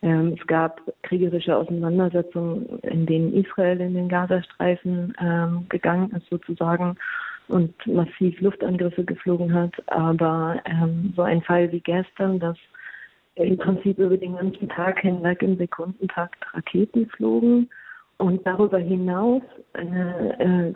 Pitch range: 170-190 Hz